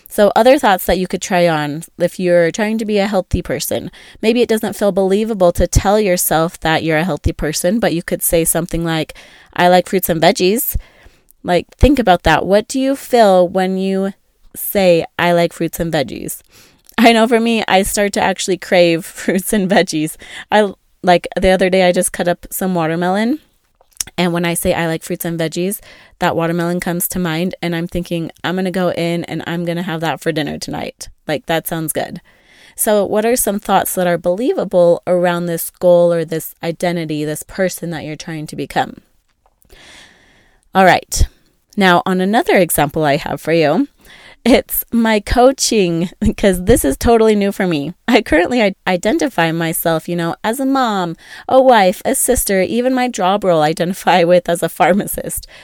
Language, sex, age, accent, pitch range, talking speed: English, female, 20-39, American, 170-205 Hz, 190 wpm